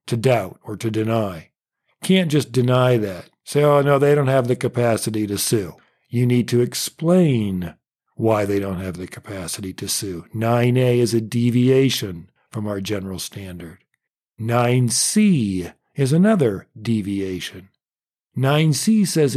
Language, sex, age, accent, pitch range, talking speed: English, male, 50-69, American, 110-155 Hz, 140 wpm